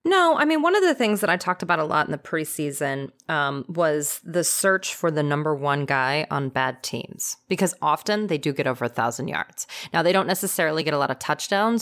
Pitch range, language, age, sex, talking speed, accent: 150-215 Hz, English, 30-49, female, 230 wpm, American